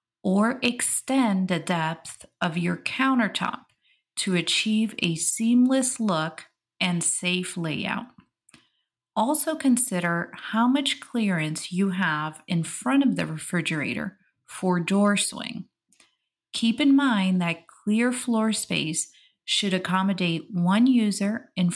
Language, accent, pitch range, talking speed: English, American, 175-235 Hz, 115 wpm